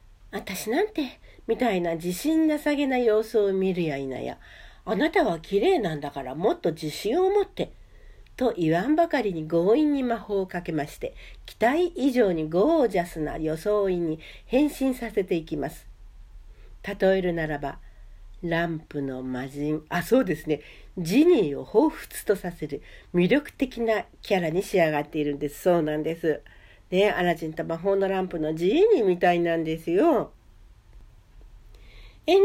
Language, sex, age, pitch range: Japanese, female, 60-79, 155-245 Hz